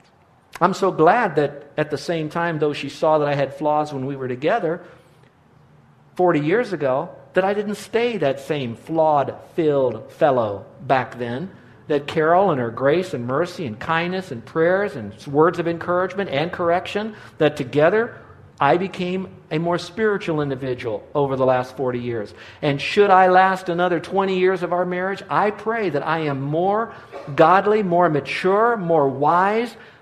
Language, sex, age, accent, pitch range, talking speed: English, male, 50-69, American, 135-180 Hz, 170 wpm